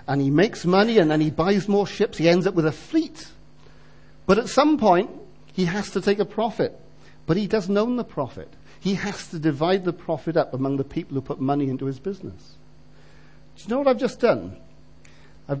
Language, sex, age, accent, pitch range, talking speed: English, male, 50-69, British, 140-190 Hz, 215 wpm